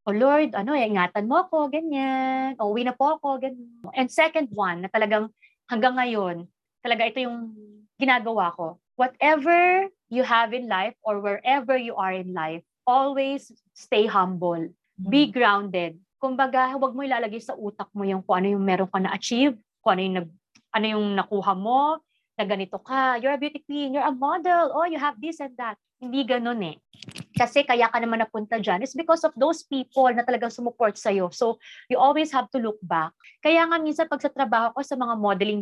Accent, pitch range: native, 205-290 Hz